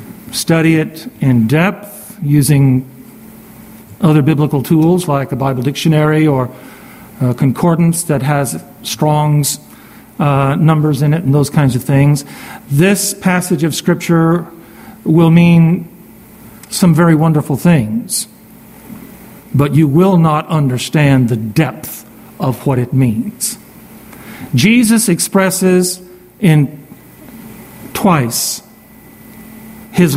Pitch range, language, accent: 150-205 Hz, English, American